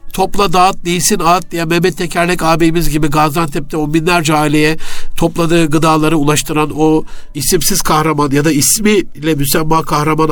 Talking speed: 140 wpm